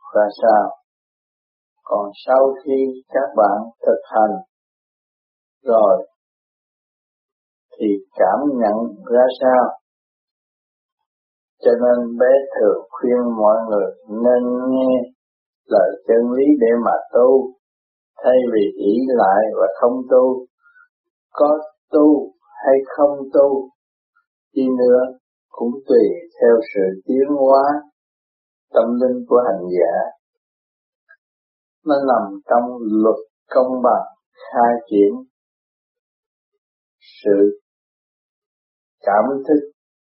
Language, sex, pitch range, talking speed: Vietnamese, male, 115-145 Hz, 100 wpm